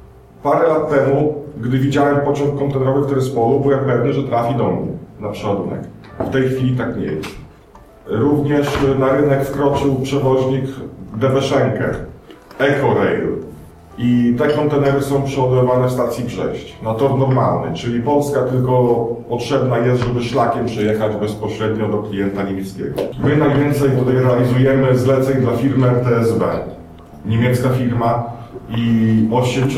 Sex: male